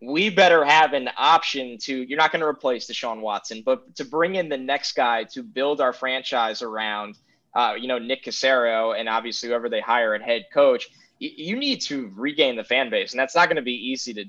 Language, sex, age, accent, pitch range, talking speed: English, male, 20-39, American, 120-165 Hz, 225 wpm